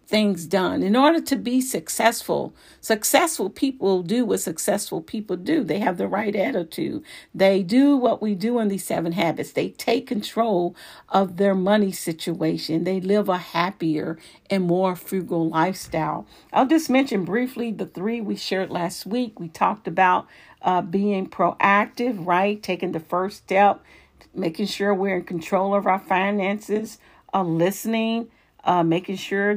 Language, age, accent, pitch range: English, 50-69, American, 185-220 Hz